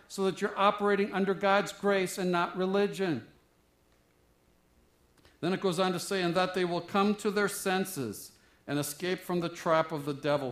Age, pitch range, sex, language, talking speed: 50-69, 120-185 Hz, male, English, 185 wpm